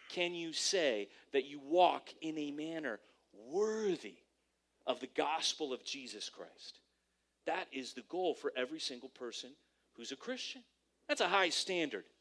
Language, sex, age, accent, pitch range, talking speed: English, male, 30-49, American, 135-215 Hz, 150 wpm